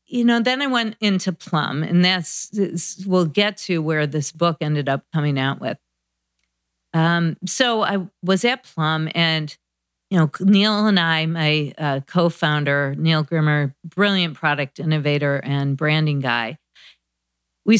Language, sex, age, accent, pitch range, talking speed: English, female, 40-59, American, 160-220 Hz, 150 wpm